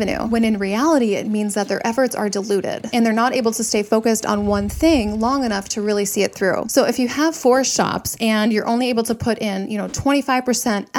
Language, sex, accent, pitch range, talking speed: English, female, American, 210-255 Hz, 235 wpm